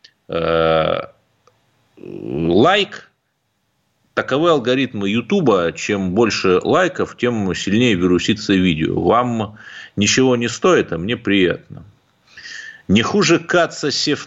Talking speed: 90 wpm